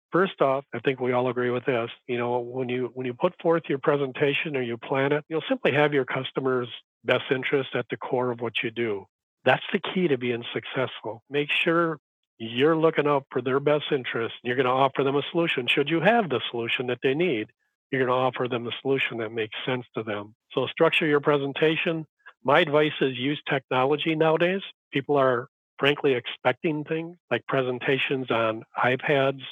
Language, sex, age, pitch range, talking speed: English, male, 50-69, 125-145 Hz, 195 wpm